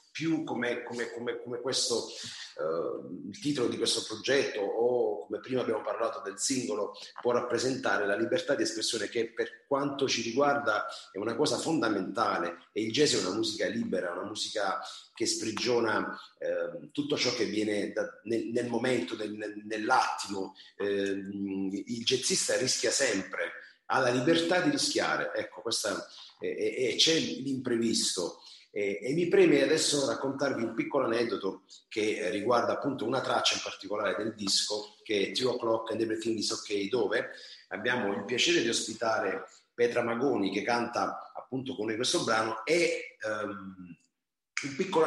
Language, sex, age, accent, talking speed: Italian, male, 40-59, native, 155 wpm